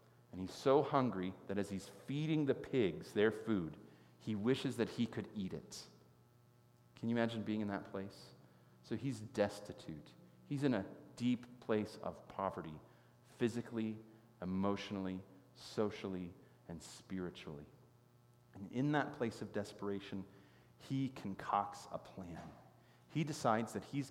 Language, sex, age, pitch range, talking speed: English, male, 40-59, 105-135 Hz, 135 wpm